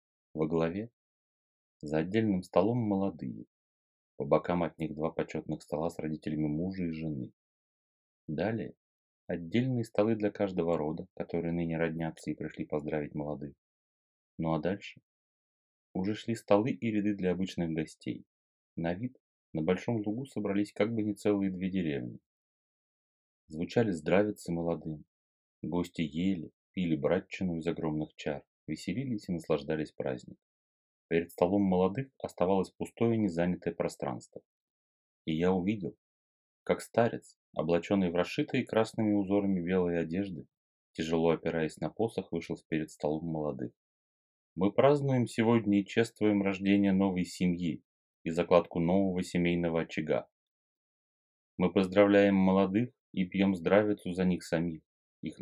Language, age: Russian, 30-49